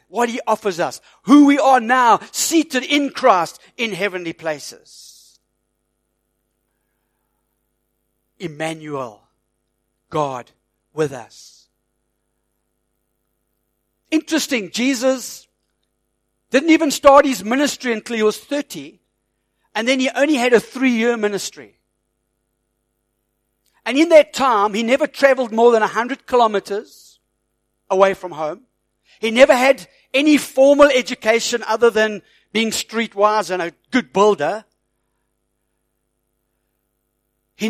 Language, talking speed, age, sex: English, 105 wpm, 60-79, male